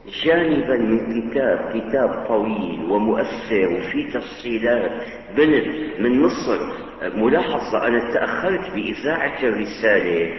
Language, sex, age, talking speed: Arabic, male, 50-69, 90 wpm